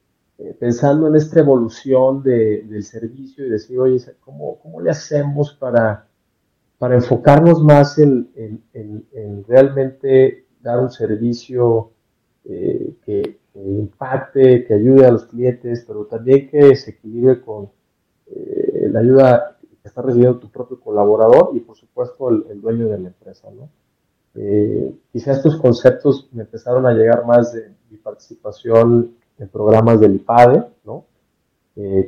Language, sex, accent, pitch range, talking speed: Spanish, male, Mexican, 110-130 Hz, 150 wpm